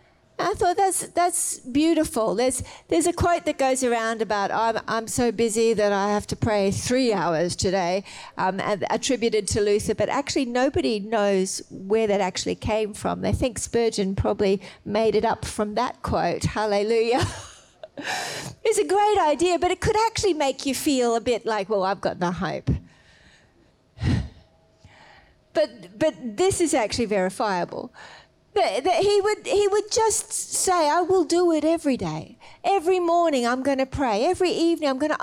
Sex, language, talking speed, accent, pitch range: female, English, 165 wpm, Australian, 225-335 Hz